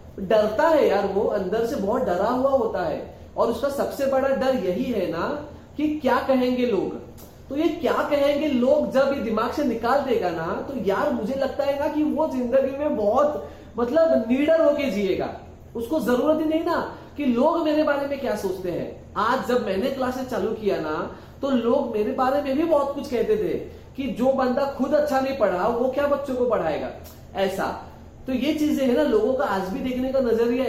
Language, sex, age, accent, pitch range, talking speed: Hindi, male, 30-49, native, 225-275 Hz, 205 wpm